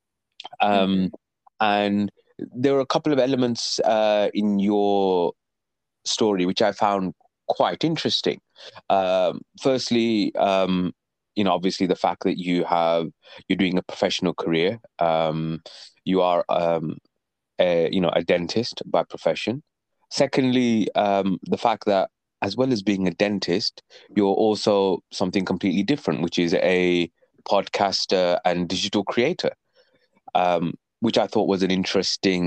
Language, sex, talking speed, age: English, male, 140 wpm, 20-39